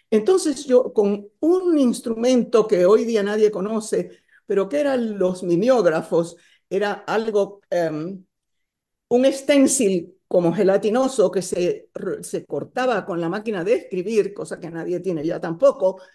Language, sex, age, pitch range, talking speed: English, female, 50-69, 185-265 Hz, 140 wpm